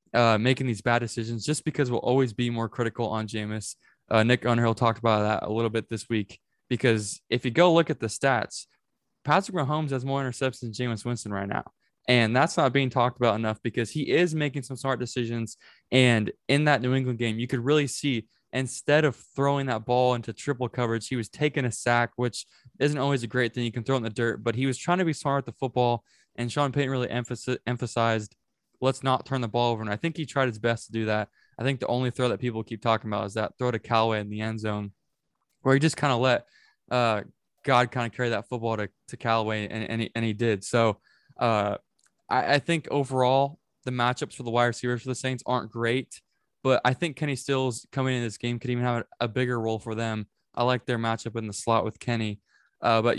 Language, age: English, 20-39